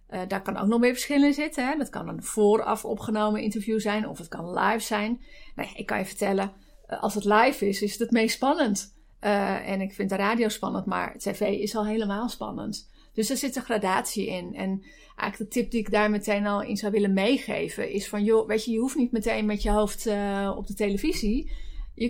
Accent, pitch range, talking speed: Dutch, 200-230 Hz, 230 wpm